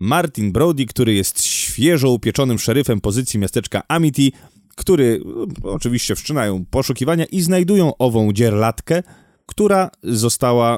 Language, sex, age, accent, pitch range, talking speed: Polish, male, 30-49, native, 115-150 Hz, 110 wpm